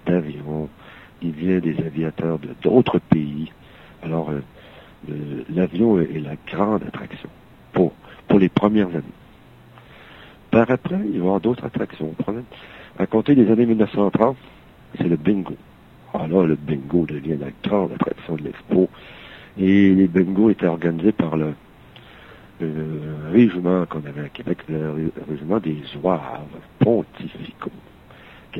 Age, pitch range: 60-79, 80-95 Hz